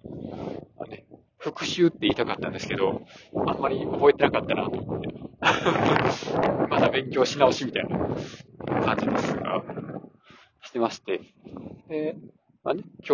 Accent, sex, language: native, male, Japanese